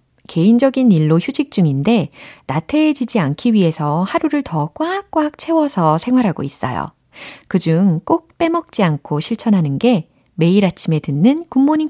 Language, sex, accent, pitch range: Korean, female, native, 155-230 Hz